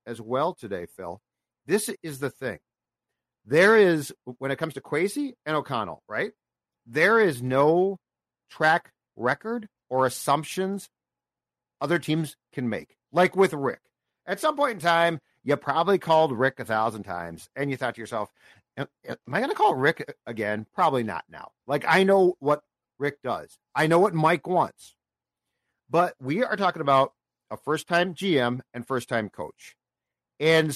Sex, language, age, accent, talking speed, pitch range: male, English, 50-69, American, 165 wpm, 130-175 Hz